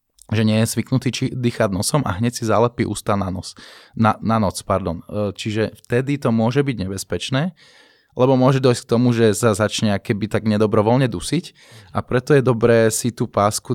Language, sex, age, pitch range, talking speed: Slovak, male, 20-39, 105-125 Hz, 185 wpm